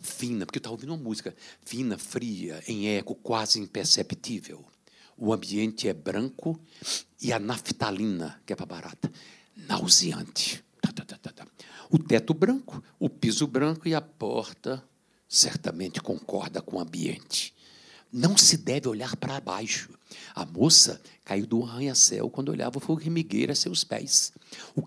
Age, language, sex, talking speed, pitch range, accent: 60-79, Portuguese, male, 140 wpm, 110-150 Hz, Brazilian